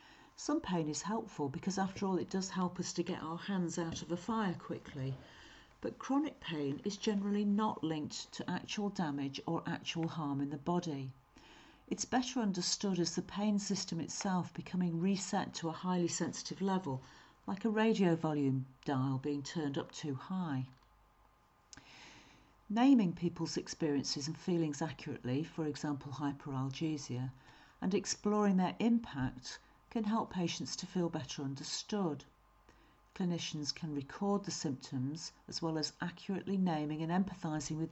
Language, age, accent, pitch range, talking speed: English, 50-69, British, 150-195 Hz, 150 wpm